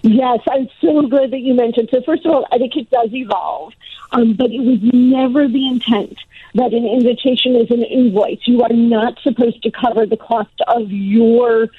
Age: 50-69